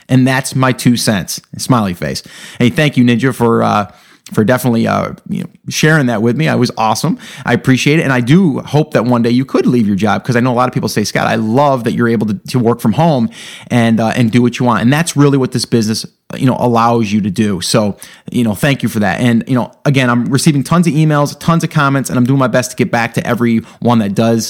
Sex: male